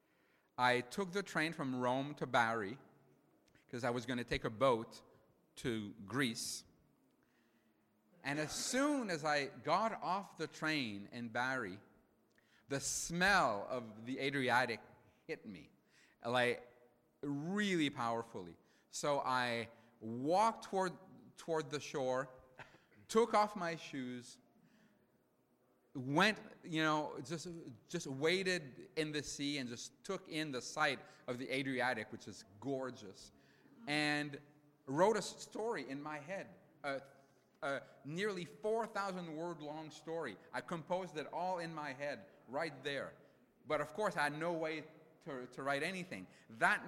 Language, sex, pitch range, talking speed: Italian, male, 125-170 Hz, 135 wpm